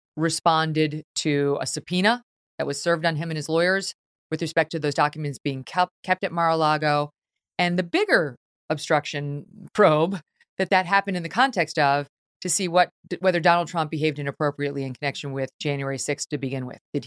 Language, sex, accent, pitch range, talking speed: English, female, American, 145-180 Hz, 175 wpm